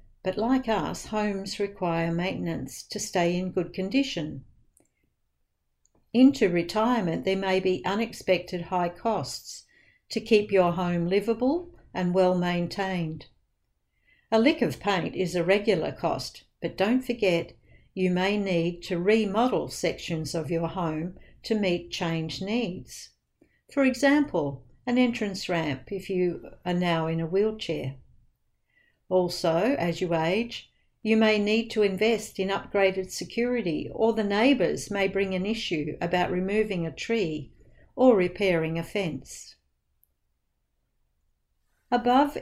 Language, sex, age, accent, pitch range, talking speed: English, female, 60-79, Australian, 170-215 Hz, 125 wpm